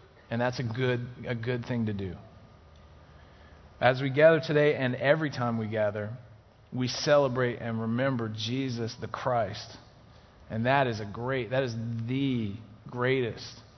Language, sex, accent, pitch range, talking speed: English, male, American, 100-125 Hz, 150 wpm